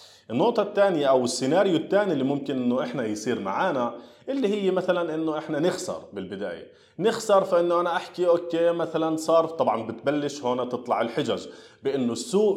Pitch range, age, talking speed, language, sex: 130-185 Hz, 20-39, 155 wpm, Arabic, male